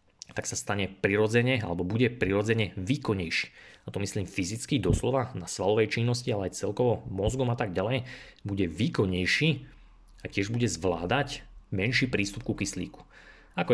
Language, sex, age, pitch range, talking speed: Slovak, male, 30-49, 95-120 Hz, 145 wpm